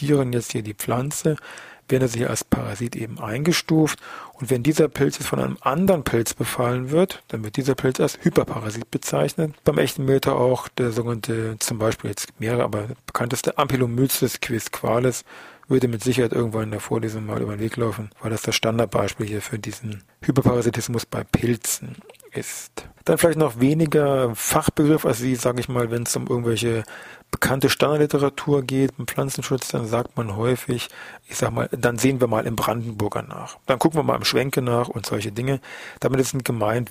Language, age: German, 40-59